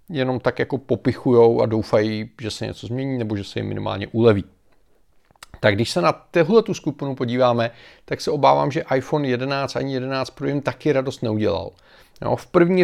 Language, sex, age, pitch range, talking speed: Czech, male, 40-59, 115-135 Hz, 180 wpm